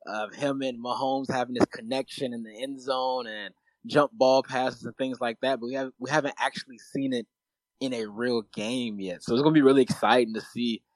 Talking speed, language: 220 wpm, English